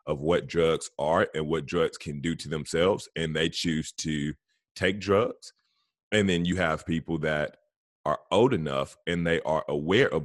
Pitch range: 75-85 Hz